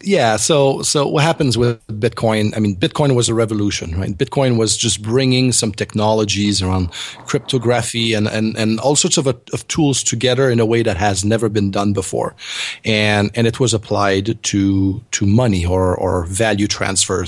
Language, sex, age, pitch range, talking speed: English, male, 40-59, 100-125 Hz, 180 wpm